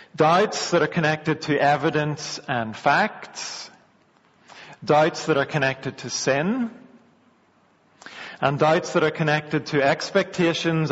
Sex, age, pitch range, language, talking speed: male, 40-59, 140-180 Hz, English, 115 wpm